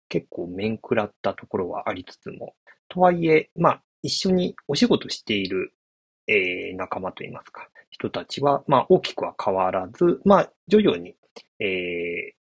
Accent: native